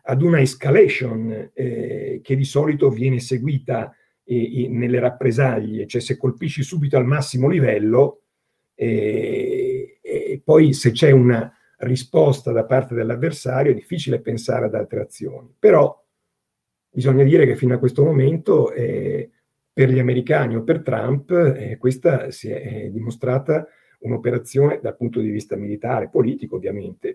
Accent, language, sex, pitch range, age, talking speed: native, Italian, male, 120-140 Hz, 50-69, 135 wpm